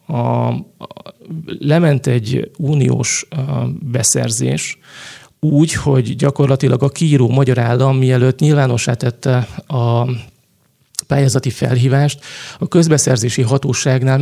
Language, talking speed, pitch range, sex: Hungarian, 100 wpm, 130-145 Hz, male